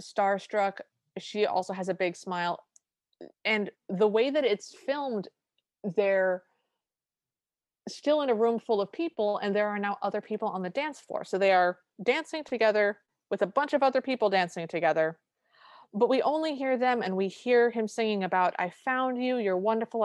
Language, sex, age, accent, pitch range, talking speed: English, female, 30-49, American, 180-225 Hz, 180 wpm